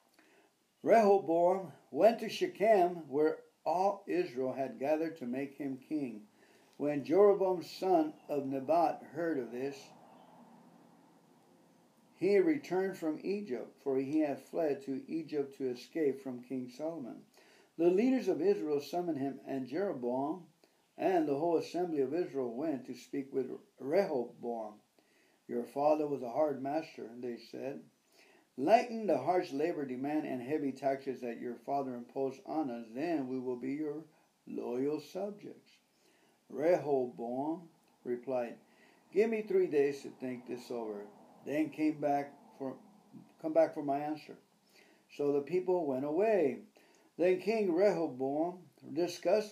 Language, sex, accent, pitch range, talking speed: English, male, American, 135-210 Hz, 130 wpm